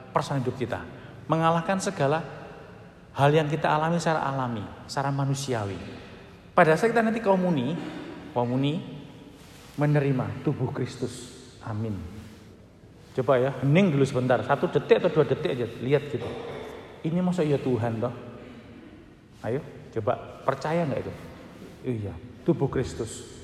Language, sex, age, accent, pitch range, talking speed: Indonesian, male, 40-59, native, 120-165 Hz, 120 wpm